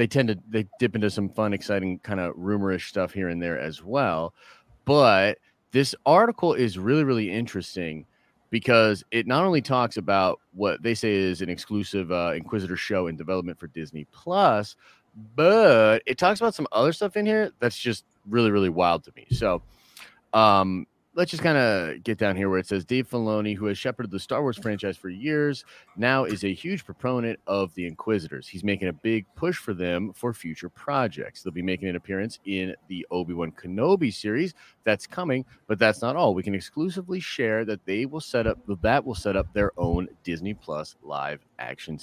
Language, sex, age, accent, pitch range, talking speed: English, male, 30-49, American, 95-125 Hz, 195 wpm